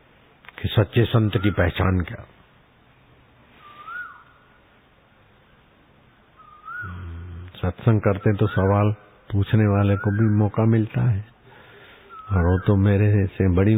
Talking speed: 100 wpm